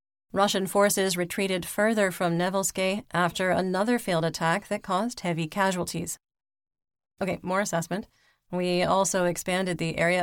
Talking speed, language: 130 wpm, English